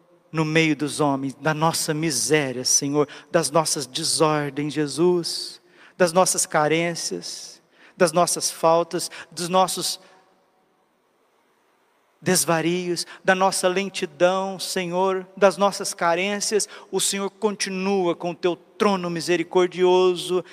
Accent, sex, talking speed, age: Brazilian, male, 105 wpm, 50-69